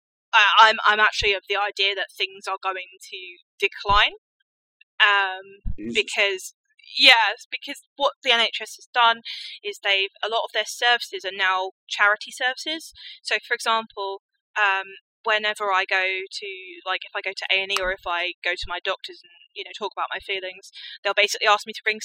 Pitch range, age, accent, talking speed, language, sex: 195-270 Hz, 20-39, British, 190 wpm, English, female